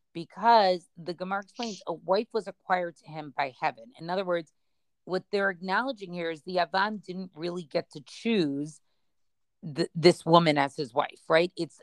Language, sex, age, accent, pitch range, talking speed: English, female, 40-59, American, 160-200 Hz, 180 wpm